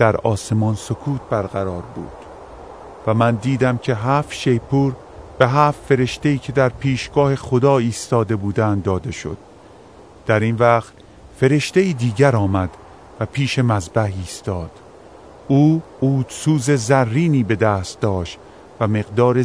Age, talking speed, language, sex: 40-59, 125 wpm, Persian, male